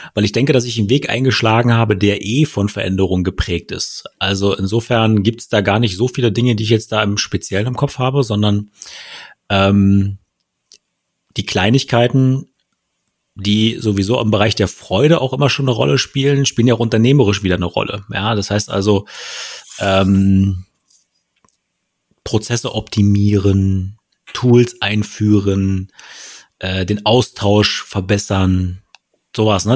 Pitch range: 100-120 Hz